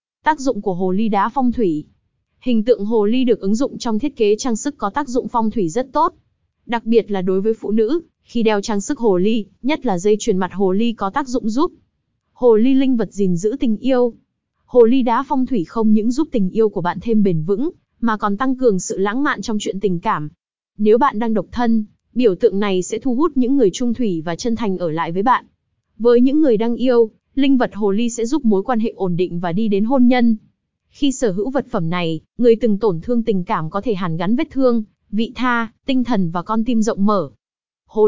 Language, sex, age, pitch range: Vietnamese, female, 20-39, 200-245 Hz